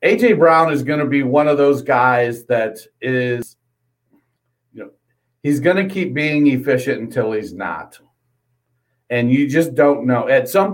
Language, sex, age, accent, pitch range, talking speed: English, male, 50-69, American, 120-145 Hz, 170 wpm